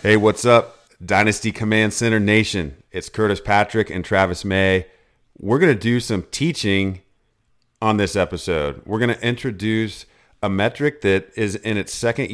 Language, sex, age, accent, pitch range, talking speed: English, male, 40-59, American, 95-110 Hz, 160 wpm